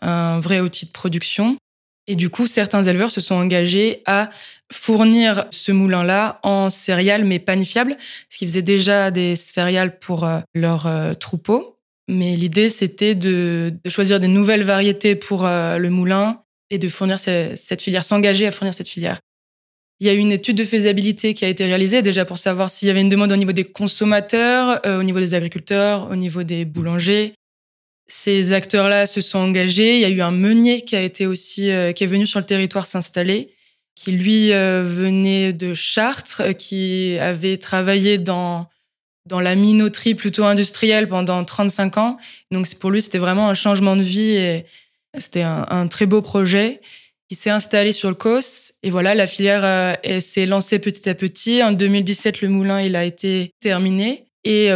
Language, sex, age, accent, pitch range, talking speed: French, female, 20-39, French, 185-210 Hz, 185 wpm